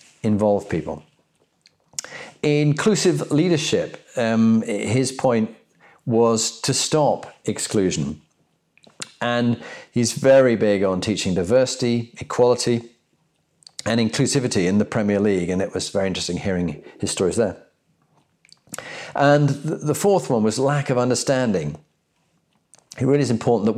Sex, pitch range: male, 105-135 Hz